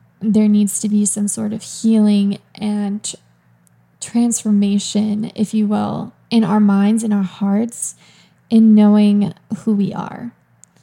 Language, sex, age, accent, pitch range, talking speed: English, female, 20-39, American, 200-225 Hz, 135 wpm